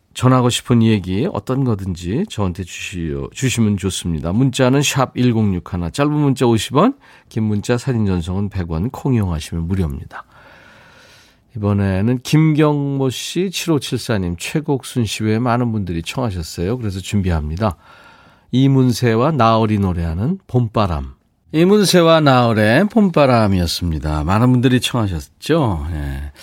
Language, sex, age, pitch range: Korean, male, 40-59, 85-130 Hz